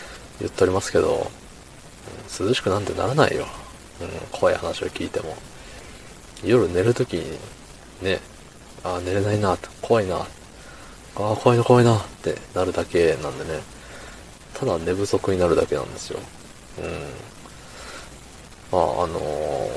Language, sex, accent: Japanese, male, native